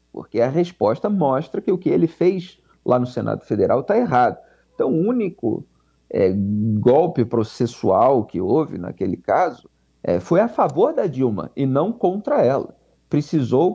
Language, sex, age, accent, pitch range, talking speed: Portuguese, male, 40-59, Brazilian, 110-165 Hz, 150 wpm